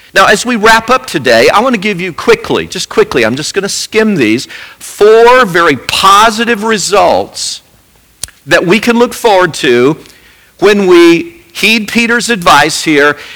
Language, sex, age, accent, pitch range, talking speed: English, male, 50-69, American, 155-230 Hz, 160 wpm